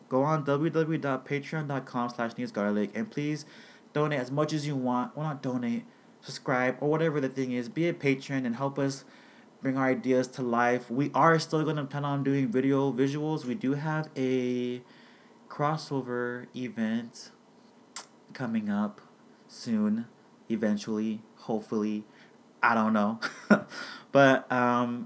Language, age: English, 20-39